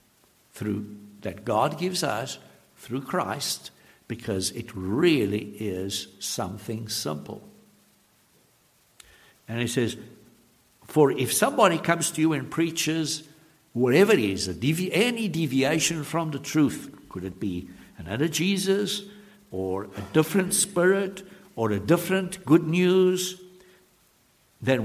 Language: English